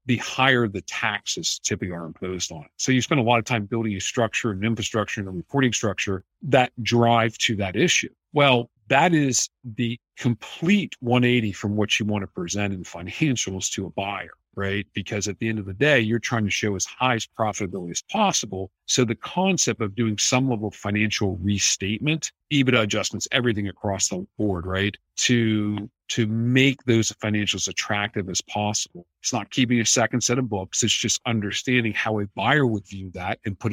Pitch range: 100-125 Hz